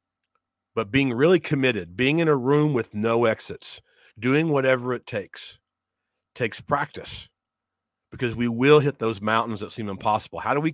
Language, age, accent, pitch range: English, 40-59, American, 105-130 Hz